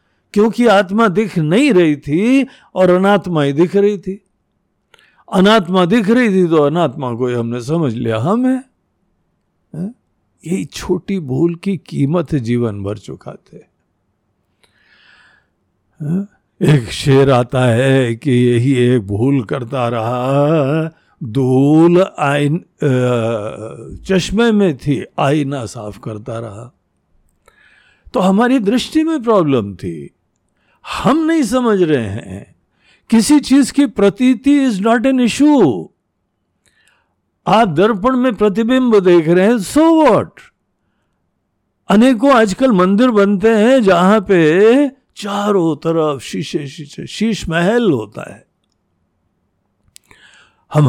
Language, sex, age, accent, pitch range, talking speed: Hindi, male, 60-79, native, 135-210 Hz, 110 wpm